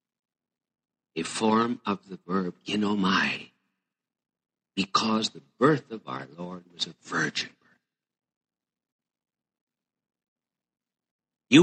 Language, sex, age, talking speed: English, male, 60-79, 90 wpm